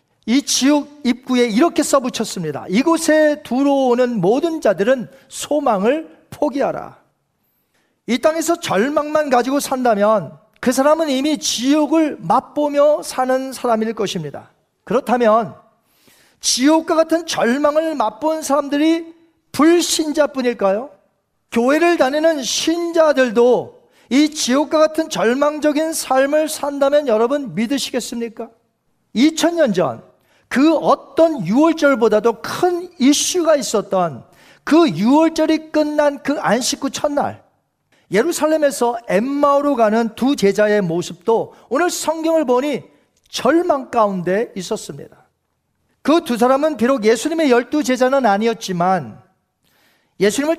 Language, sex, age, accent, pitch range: Korean, male, 40-59, native, 230-300 Hz